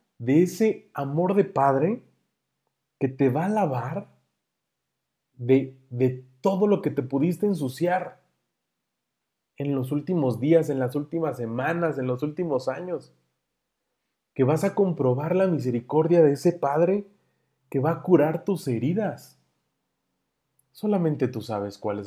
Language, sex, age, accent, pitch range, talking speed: Spanish, male, 40-59, Mexican, 110-155 Hz, 135 wpm